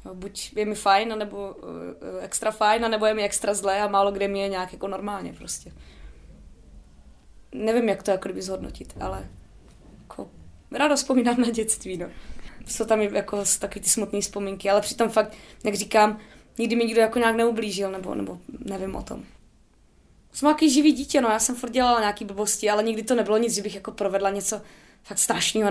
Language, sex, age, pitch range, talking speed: Czech, female, 20-39, 195-220 Hz, 185 wpm